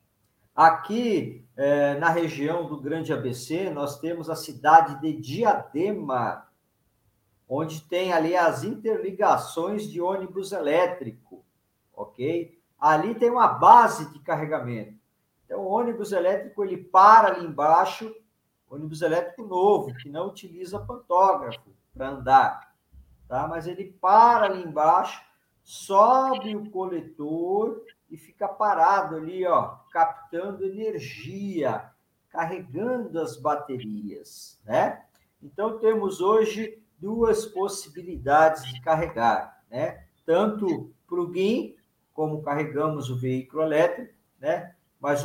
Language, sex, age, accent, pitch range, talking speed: Portuguese, male, 50-69, Brazilian, 150-200 Hz, 110 wpm